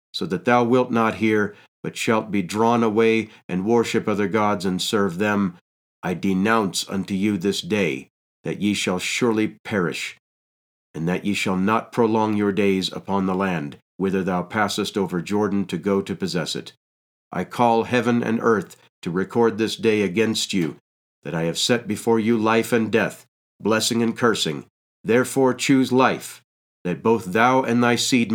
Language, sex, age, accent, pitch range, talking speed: English, male, 50-69, American, 100-115 Hz, 175 wpm